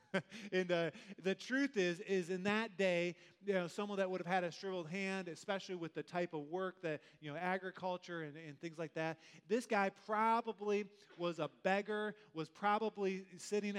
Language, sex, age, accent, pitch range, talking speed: English, male, 20-39, American, 165-200 Hz, 185 wpm